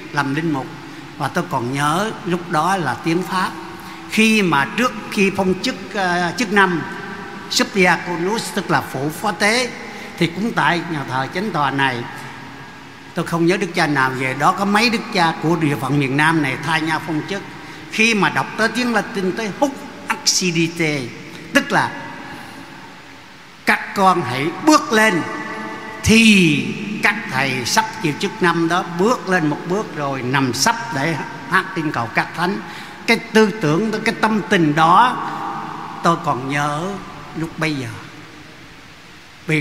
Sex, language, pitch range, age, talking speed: male, Vietnamese, 150-195 Hz, 60-79, 165 wpm